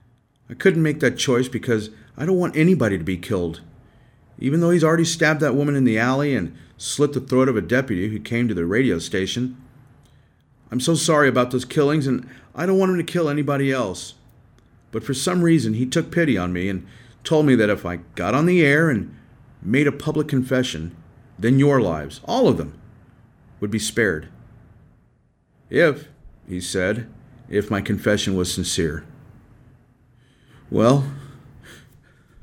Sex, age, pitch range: male, 40-59, 120-165 Hz